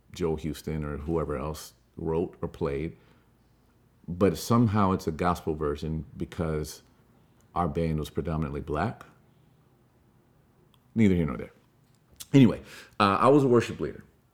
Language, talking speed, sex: English, 130 wpm, male